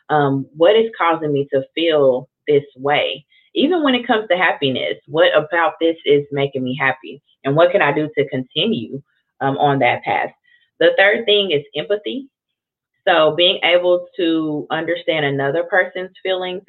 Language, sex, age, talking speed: English, female, 30-49, 165 wpm